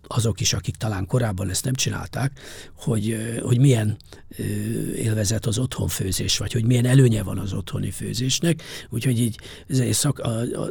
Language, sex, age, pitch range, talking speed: English, male, 50-69, 105-130 Hz, 155 wpm